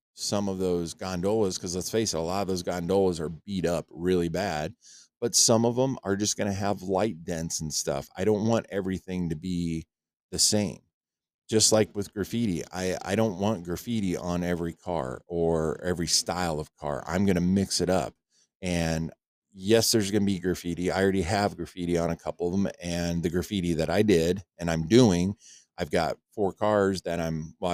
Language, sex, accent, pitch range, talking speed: English, male, American, 85-100 Hz, 200 wpm